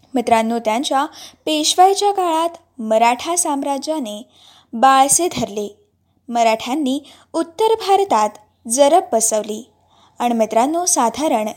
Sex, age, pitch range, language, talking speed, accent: female, 20-39, 230-320 Hz, Marathi, 85 wpm, native